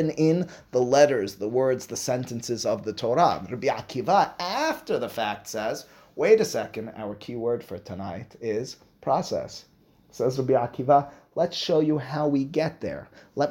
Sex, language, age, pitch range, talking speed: male, English, 30-49, 115-165 Hz, 165 wpm